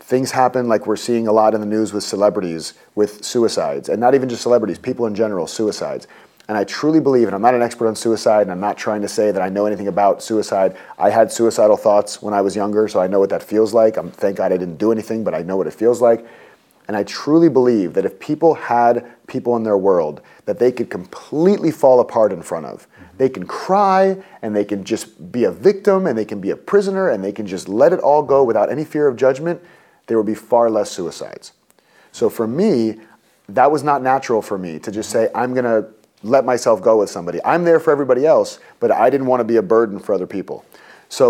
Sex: male